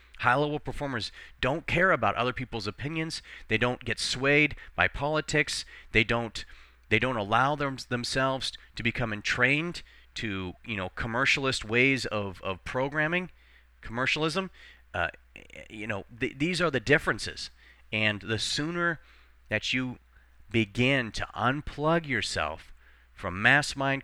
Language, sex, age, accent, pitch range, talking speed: English, male, 40-59, American, 95-135 Hz, 130 wpm